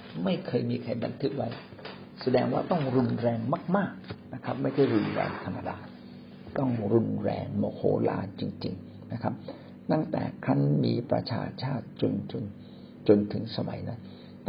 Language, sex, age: Thai, male, 60-79